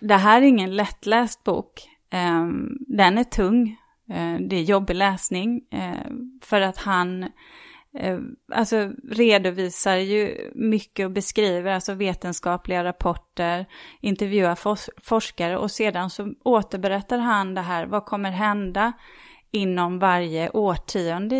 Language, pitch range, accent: Swedish, 180-235 Hz, native